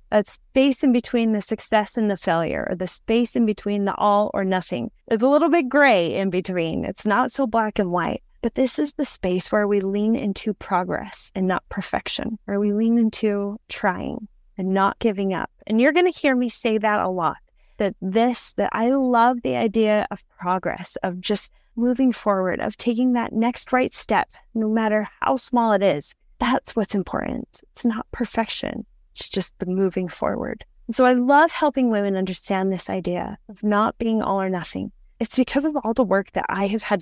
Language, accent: English, American